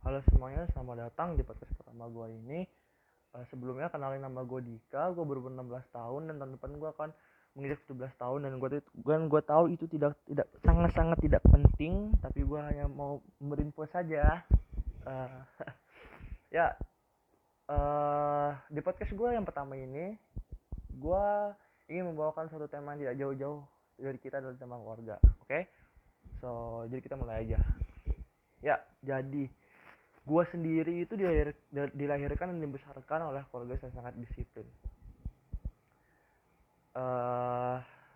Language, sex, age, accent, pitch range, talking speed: Indonesian, male, 20-39, native, 130-155 Hz, 140 wpm